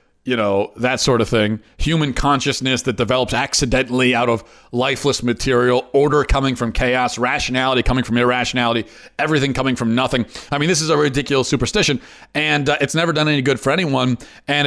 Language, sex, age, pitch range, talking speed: English, male, 40-59, 115-145 Hz, 180 wpm